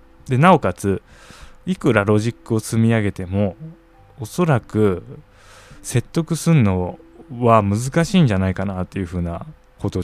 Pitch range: 95-125 Hz